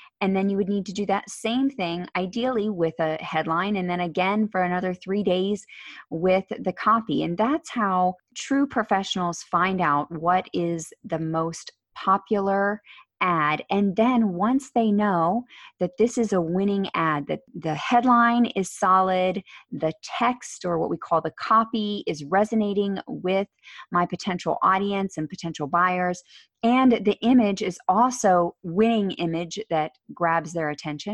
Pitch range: 175-220 Hz